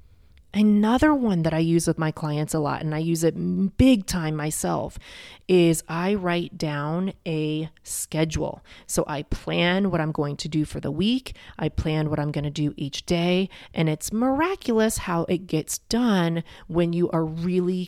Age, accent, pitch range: 30-49, American, 155-185 Hz